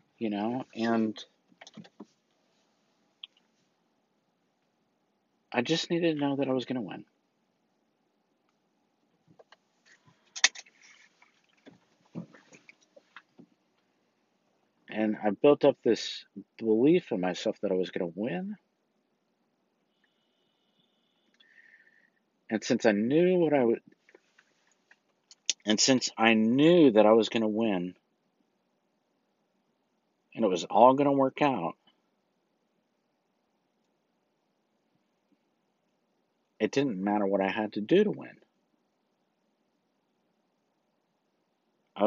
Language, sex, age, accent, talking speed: English, male, 50-69, American, 90 wpm